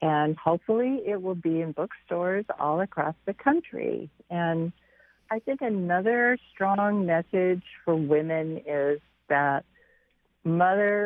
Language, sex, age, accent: English, female, 50-69, American